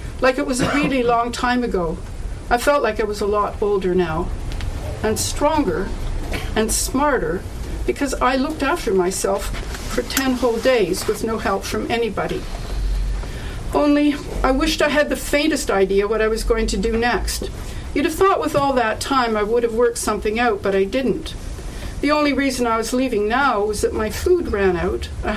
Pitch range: 200-260 Hz